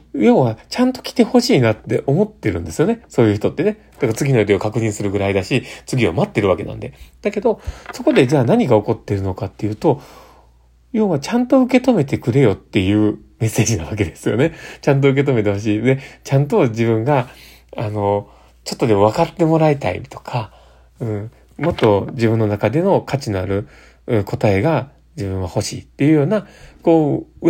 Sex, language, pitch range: male, Japanese, 105-155 Hz